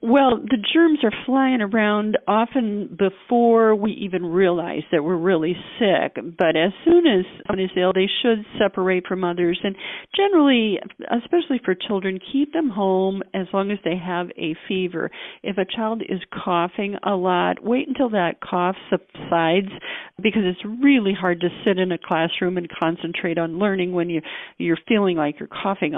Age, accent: 50-69, American